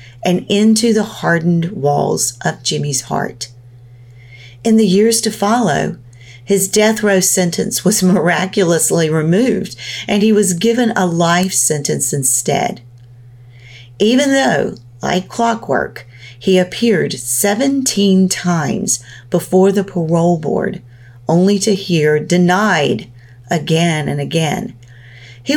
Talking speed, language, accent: 115 wpm, English, American